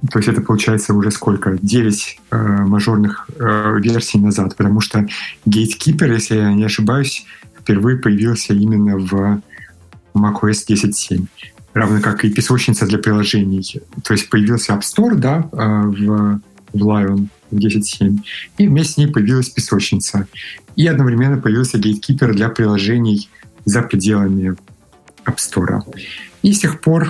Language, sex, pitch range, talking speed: Russian, male, 100-120 Hz, 135 wpm